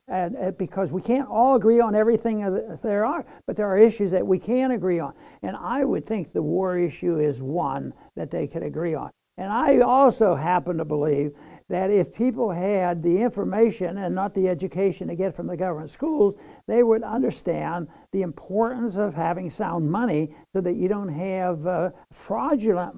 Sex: male